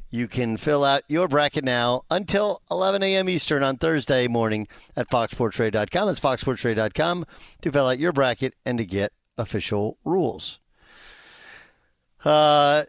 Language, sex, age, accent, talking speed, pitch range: English, male, 50-69, American, 135 wpm, 110-140 Hz